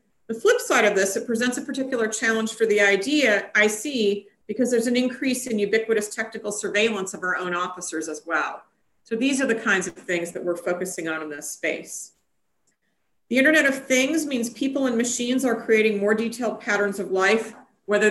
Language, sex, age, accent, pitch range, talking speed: English, female, 40-59, American, 185-245 Hz, 195 wpm